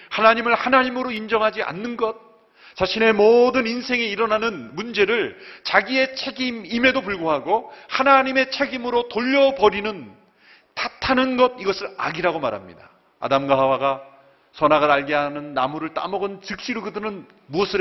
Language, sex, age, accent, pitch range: Korean, male, 40-59, native, 160-240 Hz